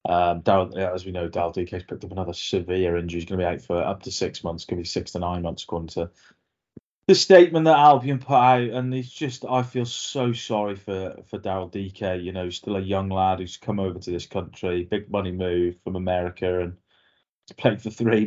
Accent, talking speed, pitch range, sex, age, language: British, 240 wpm, 90-100 Hz, male, 20-39, English